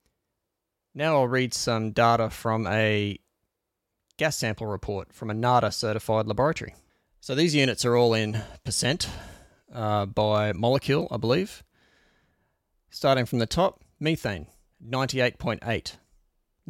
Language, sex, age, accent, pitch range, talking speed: English, male, 30-49, Australian, 105-130 Hz, 120 wpm